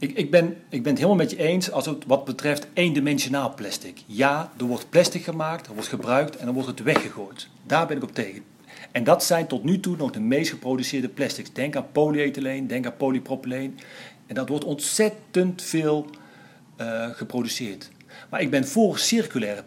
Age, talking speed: 40-59, 185 wpm